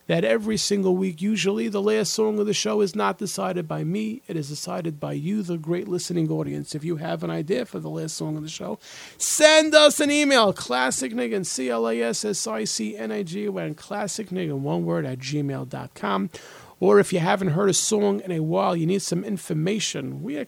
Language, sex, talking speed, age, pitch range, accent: English, male, 215 wpm, 40-59, 155-210 Hz, American